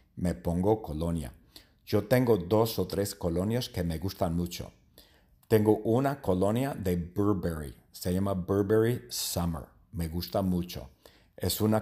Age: 50-69